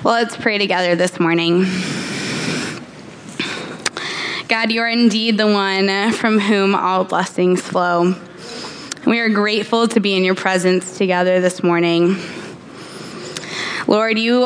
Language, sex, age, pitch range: English, female, 20-39, 185-220 Hz